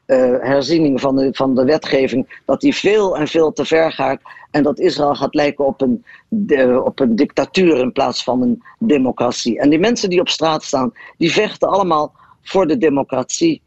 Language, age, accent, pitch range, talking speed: Dutch, 50-69, Dutch, 135-180 Hz, 180 wpm